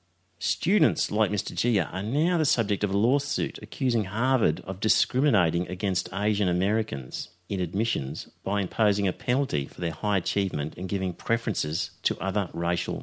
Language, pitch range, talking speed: English, 85-110 Hz, 155 wpm